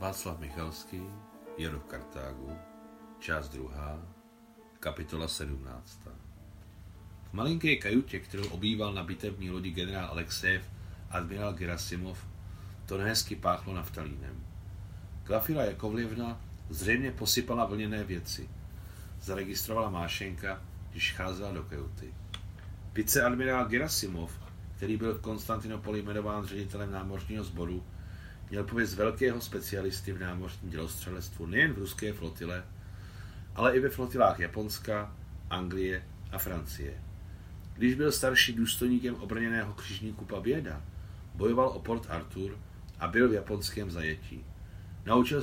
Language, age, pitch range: Czech, 40-59, 90-110 Hz